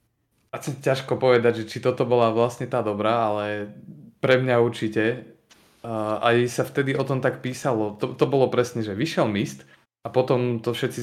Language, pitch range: Slovak, 110-120 Hz